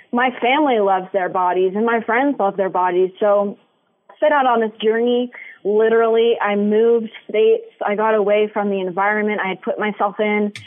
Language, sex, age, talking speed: English, female, 20-39, 185 wpm